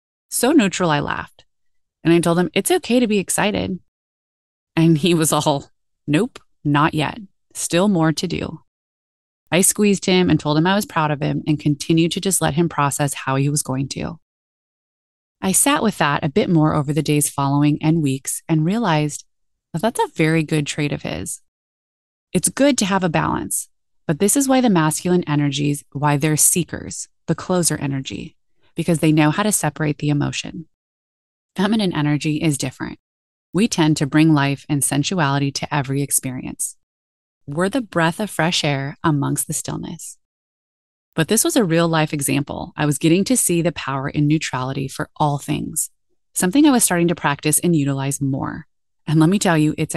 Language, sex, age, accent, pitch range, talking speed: English, female, 20-39, American, 145-175 Hz, 185 wpm